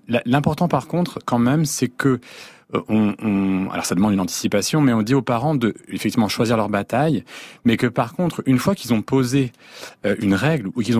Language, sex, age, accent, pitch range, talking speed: French, male, 30-49, French, 105-140 Hz, 200 wpm